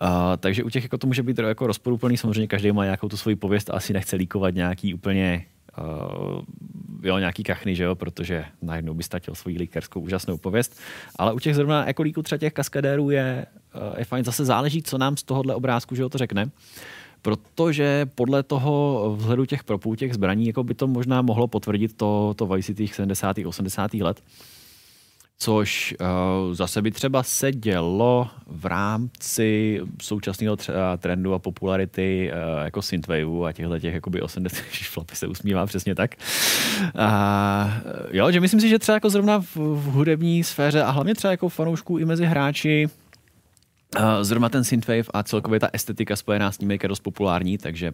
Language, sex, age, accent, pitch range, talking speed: Czech, male, 30-49, native, 95-130 Hz, 180 wpm